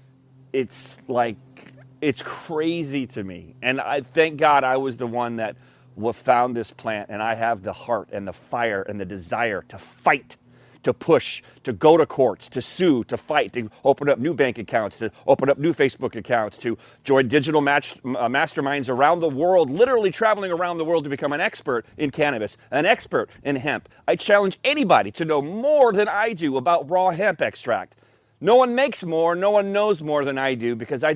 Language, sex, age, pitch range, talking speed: English, male, 30-49, 130-180 Hz, 200 wpm